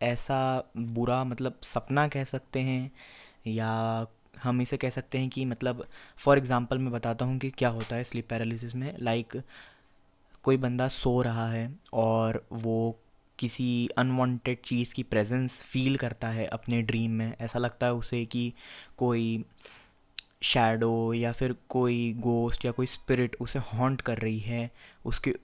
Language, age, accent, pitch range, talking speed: Hindi, 20-39, native, 115-130 Hz, 160 wpm